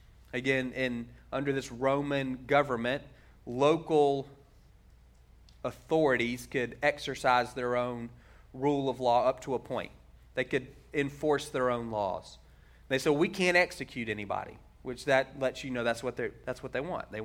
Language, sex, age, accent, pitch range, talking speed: English, male, 30-49, American, 115-140 Hz, 155 wpm